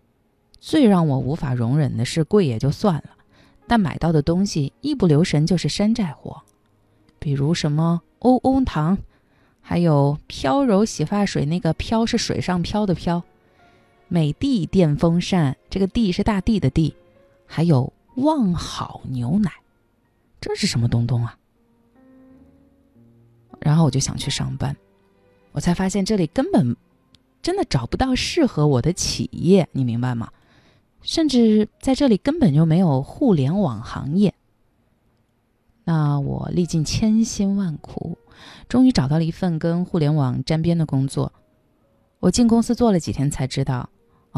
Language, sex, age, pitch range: Chinese, female, 20-39, 130-210 Hz